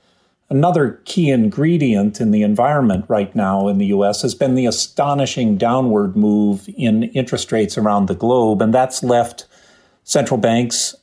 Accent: American